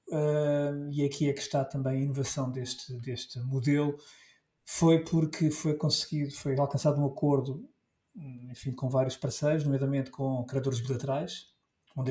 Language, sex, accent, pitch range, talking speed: Portuguese, male, Portuguese, 130-160 Hz, 135 wpm